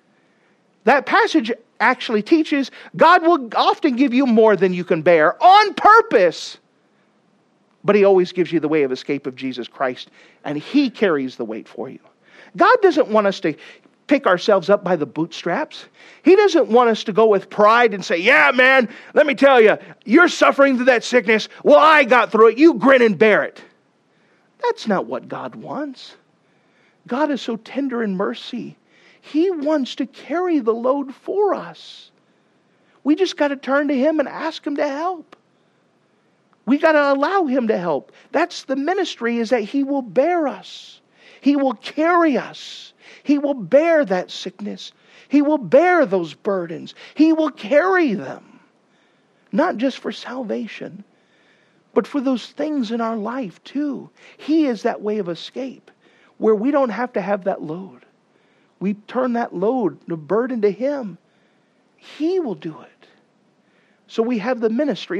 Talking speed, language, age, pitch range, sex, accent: 170 wpm, English, 40-59, 210-300 Hz, male, American